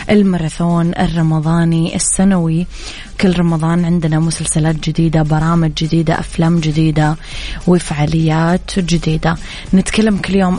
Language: Arabic